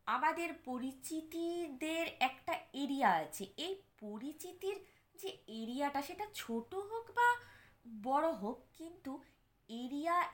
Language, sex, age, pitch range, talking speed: Bengali, female, 20-39, 230-315 Hz, 100 wpm